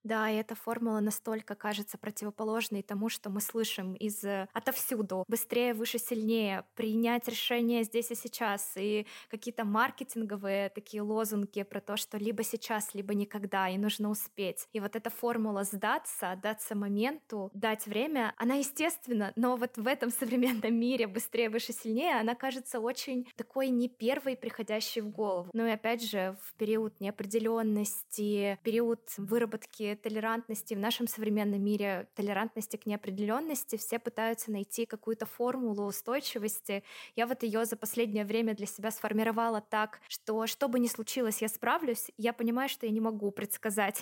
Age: 20-39